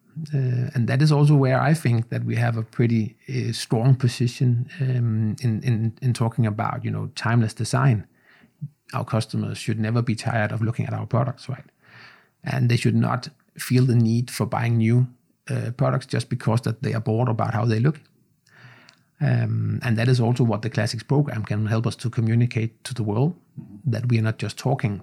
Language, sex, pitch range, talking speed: English, male, 110-130 Hz, 200 wpm